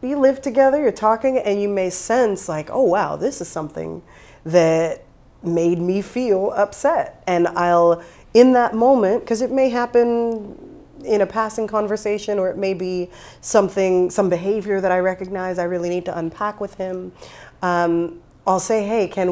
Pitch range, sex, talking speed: 170-210 Hz, female, 170 wpm